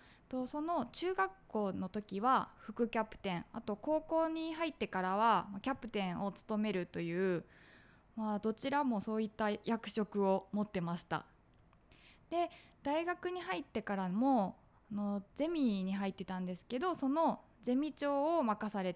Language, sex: Japanese, female